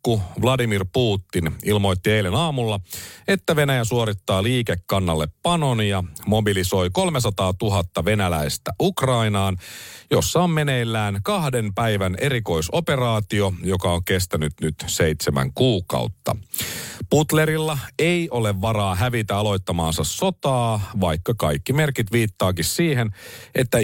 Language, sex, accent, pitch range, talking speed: Finnish, male, native, 95-130 Hz, 100 wpm